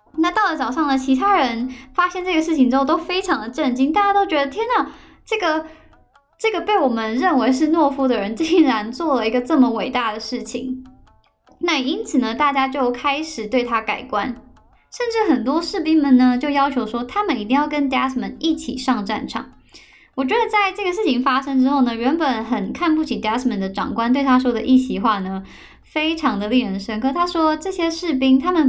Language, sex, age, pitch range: Chinese, male, 10-29, 240-310 Hz